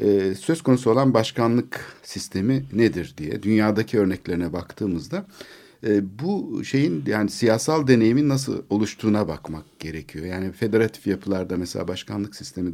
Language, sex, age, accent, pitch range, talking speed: Turkish, male, 60-79, native, 100-140 Hz, 120 wpm